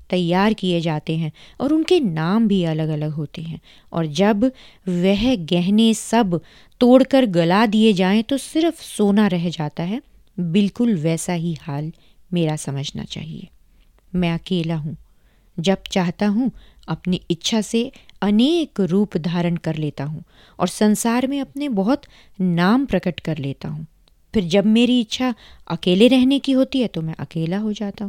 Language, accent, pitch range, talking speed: Hindi, native, 170-225 Hz, 155 wpm